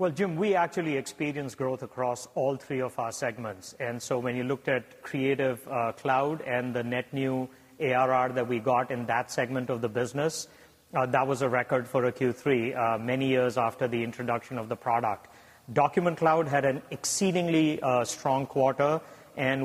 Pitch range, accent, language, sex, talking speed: 125-150 Hz, Indian, English, male, 185 wpm